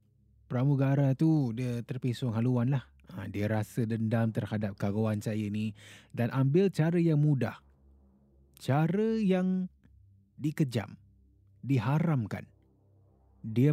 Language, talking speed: Malay, 100 wpm